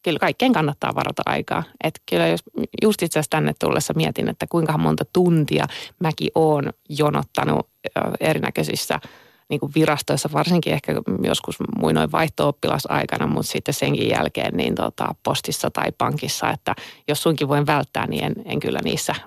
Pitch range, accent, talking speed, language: 145-175 Hz, native, 155 wpm, Finnish